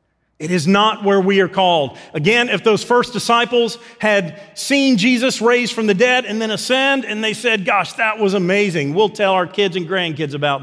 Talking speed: 205 wpm